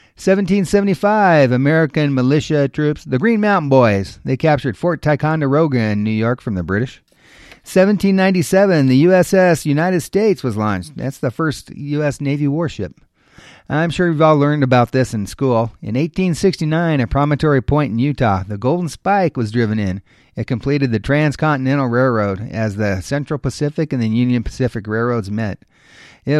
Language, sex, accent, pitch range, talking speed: English, male, American, 115-155 Hz, 155 wpm